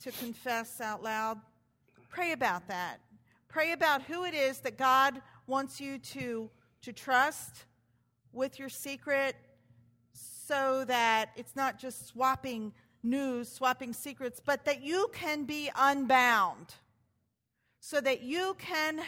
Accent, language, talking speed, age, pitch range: American, English, 130 wpm, 50-69, 190-280 Hz